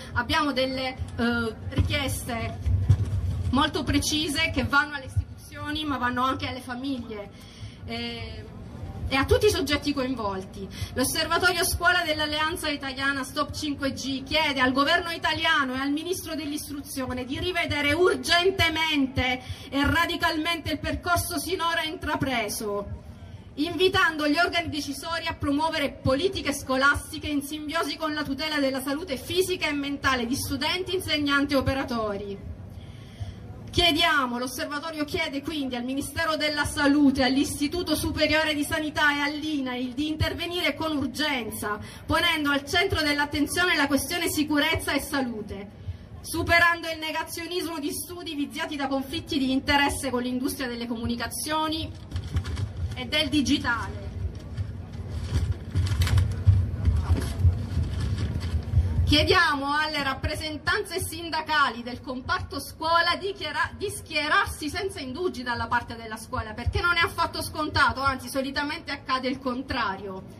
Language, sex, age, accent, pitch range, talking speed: Italian, female, 30-49, native, 235-320 Hz, 115 wpm